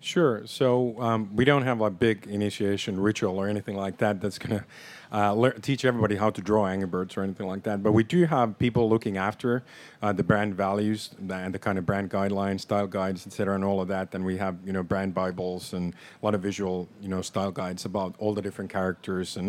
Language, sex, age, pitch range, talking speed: English, male, 40-59, 95-110 Hz, 235 wpm